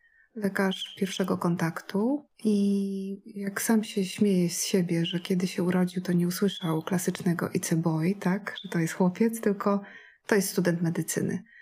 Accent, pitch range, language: native, 180-220 Hz, Polish